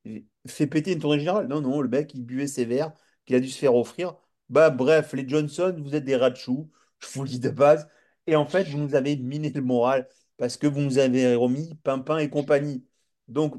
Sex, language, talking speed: male, French, 240 wpm